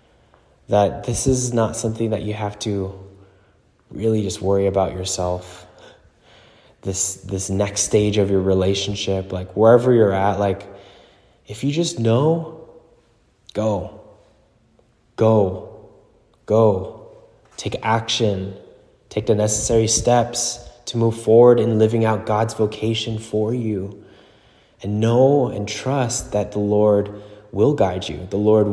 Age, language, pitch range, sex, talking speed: 20-39, English, 100-120 Hz, male, 125 wpm